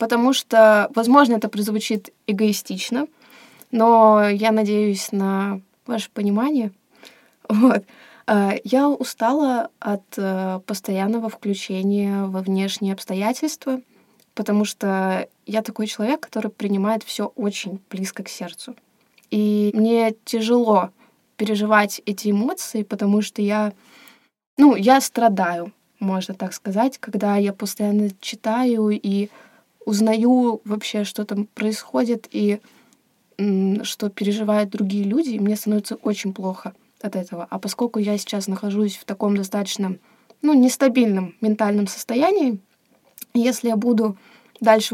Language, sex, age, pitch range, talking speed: Russian, female, 20-39, 205-235 Hz, 115 wpm